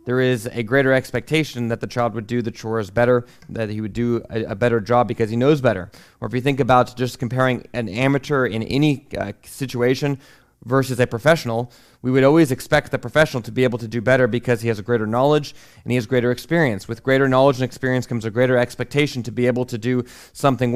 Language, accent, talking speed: English, American, 230 wpm